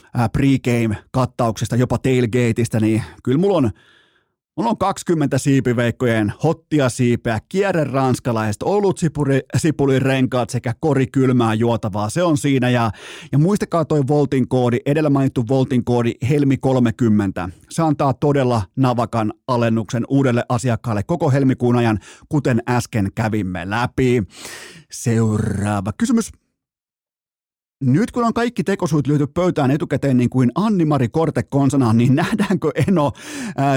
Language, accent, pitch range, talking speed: Finnish, native, 120-150 Hz, 125 wpm